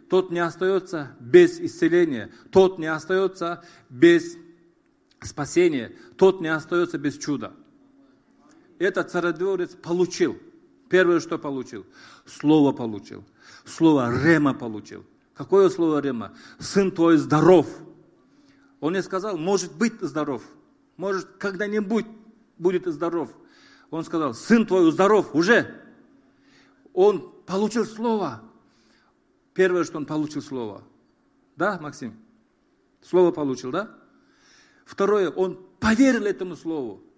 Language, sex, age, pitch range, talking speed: Russian, male, 40-59, 165-280 Hz, 105 wpm